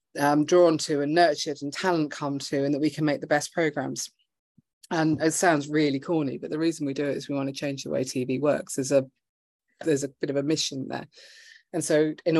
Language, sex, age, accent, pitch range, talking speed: English, female, 30-49, British, 140-160 Hz, 235 wpm